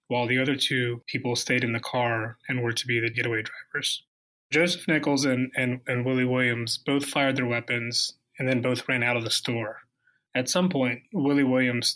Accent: American